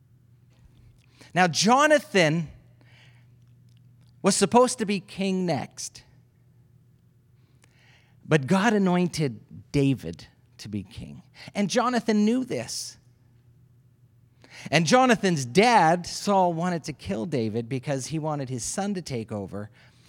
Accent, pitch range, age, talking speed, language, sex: American, 120-175 Hz, 40-59, 105 wpm, English, male